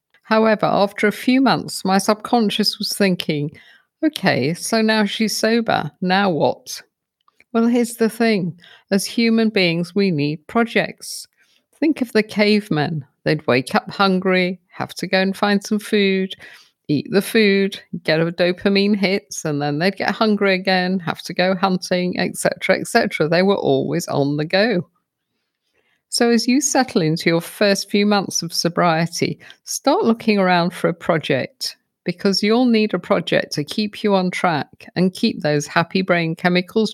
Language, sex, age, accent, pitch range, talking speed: English, female, 50-69, British, 165-215 Hz, 160 wpm